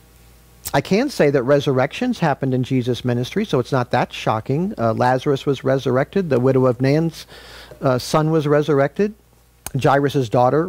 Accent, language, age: American, English, 50-69